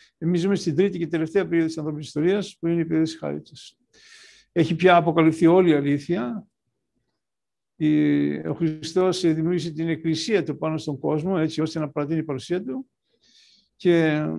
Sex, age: male, 60-79